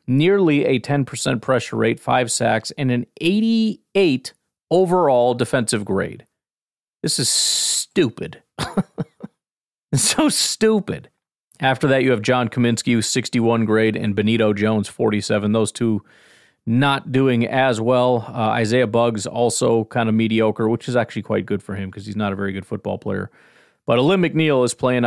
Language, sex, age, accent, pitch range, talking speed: English, male, 40-59, American, 110-130 Hz, 150 wpm